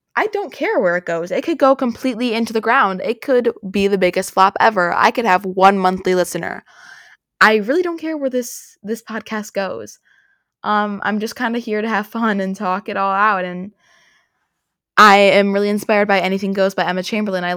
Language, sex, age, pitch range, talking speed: English, female, 20-39, 185-230 Hz, 210 wpm